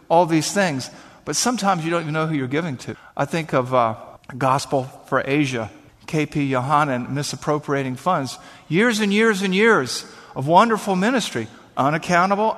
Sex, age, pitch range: male, 50-69, 135-175 Hz